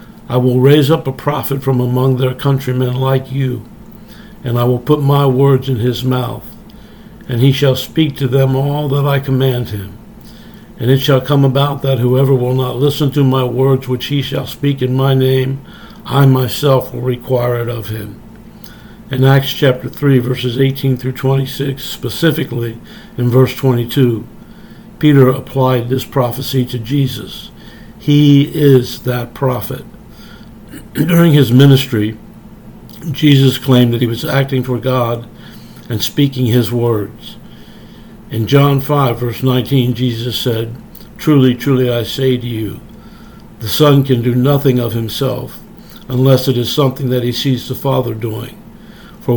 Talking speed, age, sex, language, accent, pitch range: 155 wpm, 60-79, male, English, American, 125-140 Hz